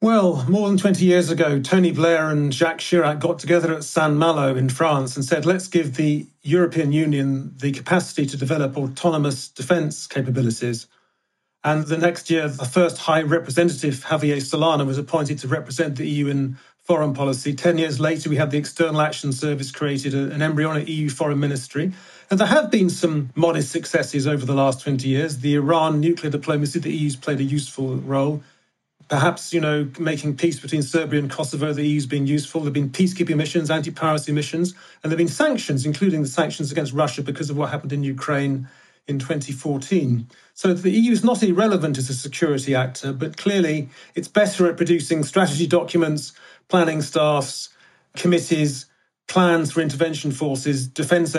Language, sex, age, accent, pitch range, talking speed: English, male, 40-59, British, 140-165 Hz, 175 wpm